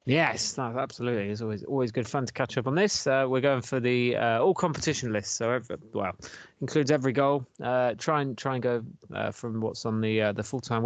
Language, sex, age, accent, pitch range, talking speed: English, male, 20-39, British, 115-145 Hz, 240 wpm